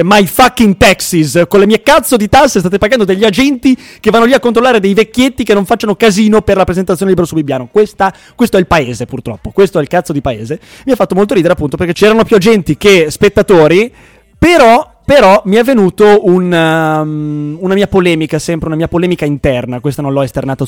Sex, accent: male, native